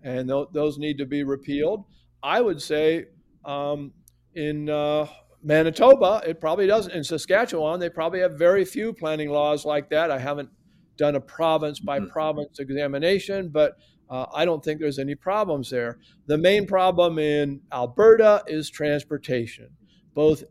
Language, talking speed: English, 150 wpm